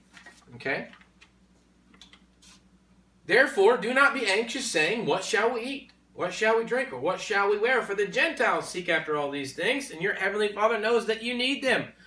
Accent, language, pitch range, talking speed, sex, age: American, English, 140-225 Hz, 185 wpm, male, 30-49